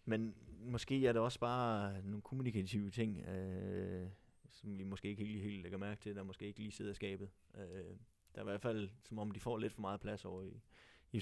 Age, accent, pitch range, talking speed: 20-39, native, 95-105 Hz, 220 wpm